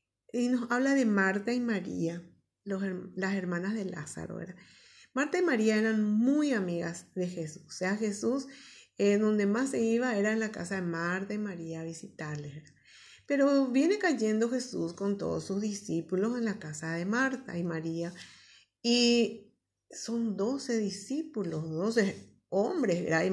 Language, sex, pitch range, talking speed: Spanish, female, 175-225 Hz, 160 wpm